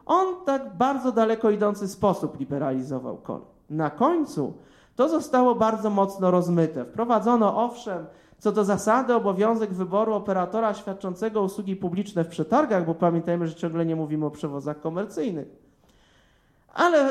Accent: native